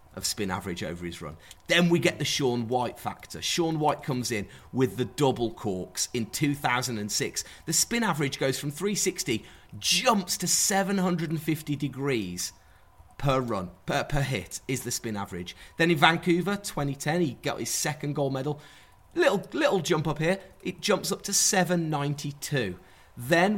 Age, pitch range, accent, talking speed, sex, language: 30-49, 130-175 Hz, British, 190 wpm, male, English